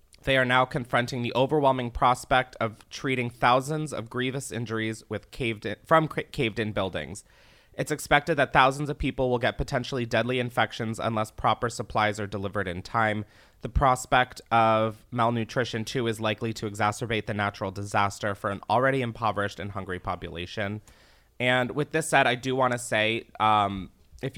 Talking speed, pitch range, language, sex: 165 wpm, 105-125 Hz, English, male